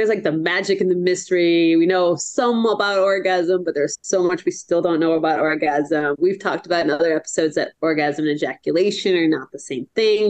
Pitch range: 160-205 Hz